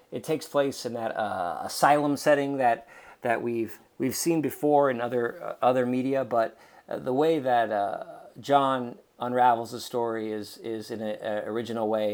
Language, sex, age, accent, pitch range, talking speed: English, male, 40-59, American, 110-140 Hz, 175 wpm